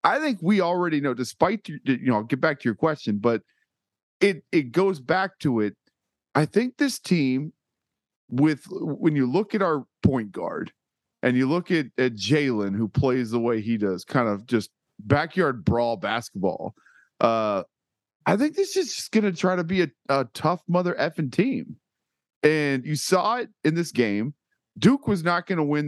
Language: English